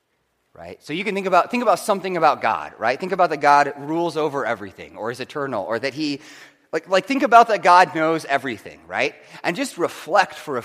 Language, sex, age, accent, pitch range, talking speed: English, male, 30-49, American, 160-210 Hz, 220 wpm